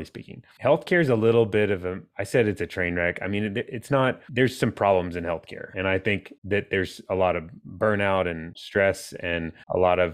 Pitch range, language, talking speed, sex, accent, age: 90-105 Hz, English, 225 wpm, male, American, 30-49